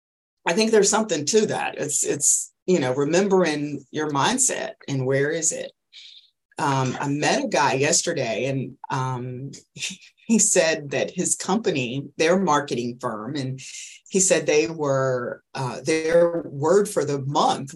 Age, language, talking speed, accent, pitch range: 40-59, English, 150 wpm, American, 135-180 Hz